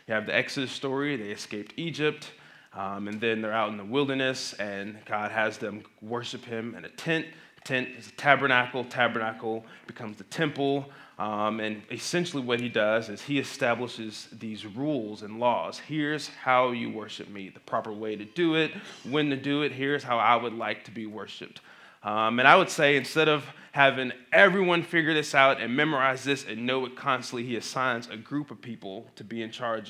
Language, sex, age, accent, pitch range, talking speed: English, male, 20-39, American, 110-140 Hz, 195 wpm